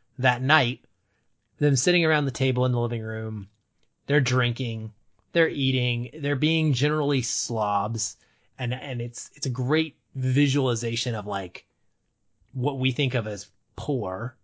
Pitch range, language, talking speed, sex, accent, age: 115-145 Hz, English, 140 wpm, male, American, 30-49